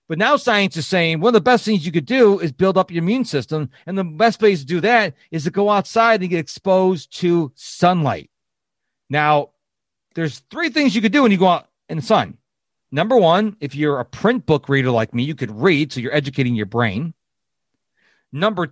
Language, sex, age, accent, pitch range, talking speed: English, male, 40-59, American, 145-210 Hz, 220 wpm